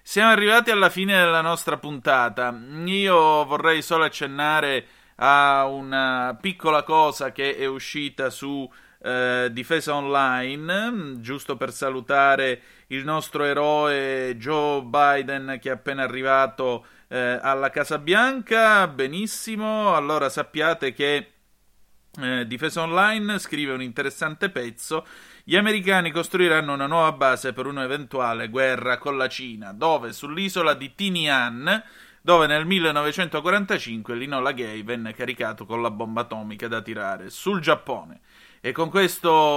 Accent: native